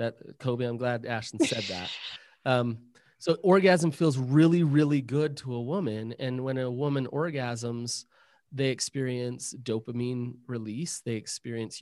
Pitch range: 120-145 Hz